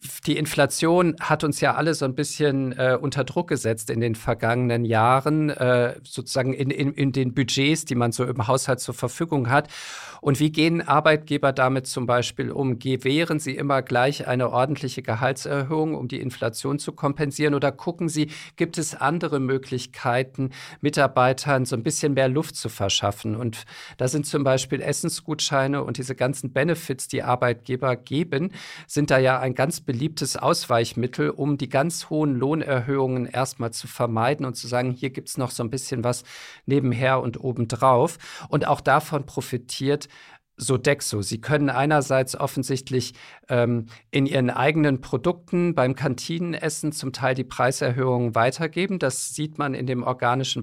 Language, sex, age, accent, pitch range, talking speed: German, male, 50-69, German, 125-150 Hz, 160 wpm